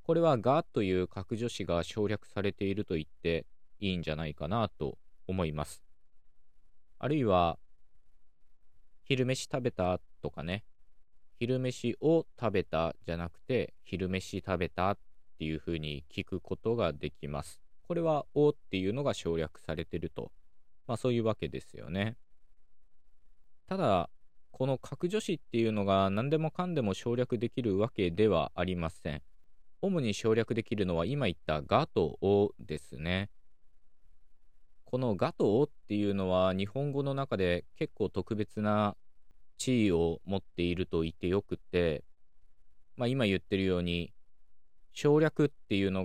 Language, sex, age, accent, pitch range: Japanese, male, 20-39, native, 85-115 Hz